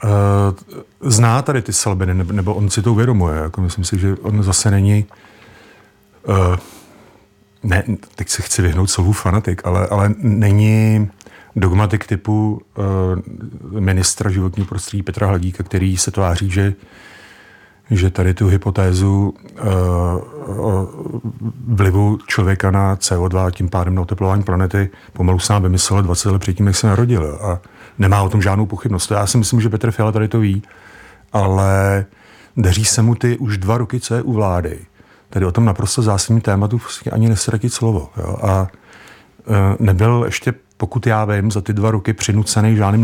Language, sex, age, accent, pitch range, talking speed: Czech, male, 40-59, native, 95-110 Hz, 165 wpm